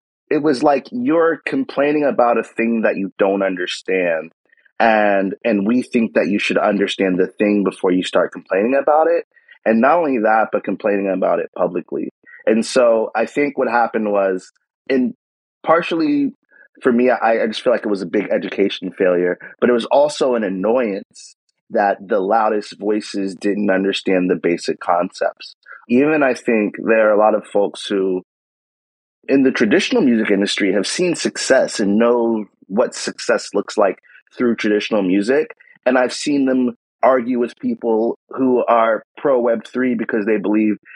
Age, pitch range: 30-49, 100-130 Hz